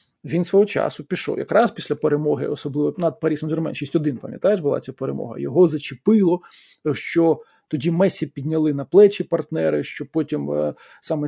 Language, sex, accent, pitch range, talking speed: Ukrainian, male, native, 145-200 Hz, 150 wpm